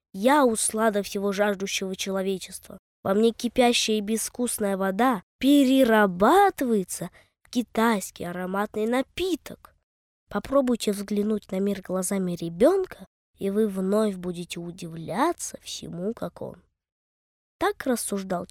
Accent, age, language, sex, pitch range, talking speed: native, 20-39, Russian, female, 190-265 Hz, 105 wpm